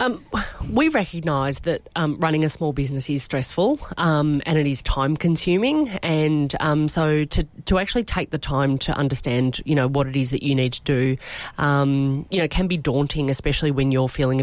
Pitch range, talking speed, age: 135-165 Hz, 200 wpm, 30-49